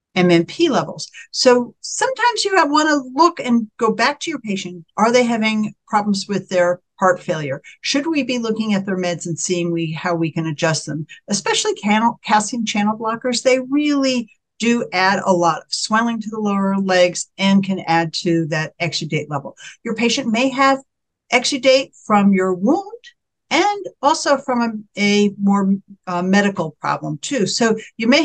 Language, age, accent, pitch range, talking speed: English, 60-79, American, 180-245 Hz, 175 wpm